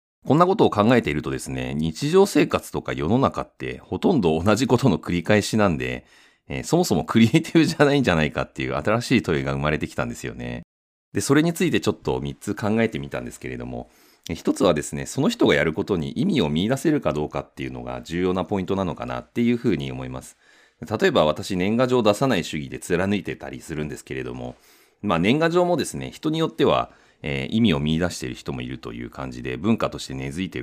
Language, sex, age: Japanese, male, 40-59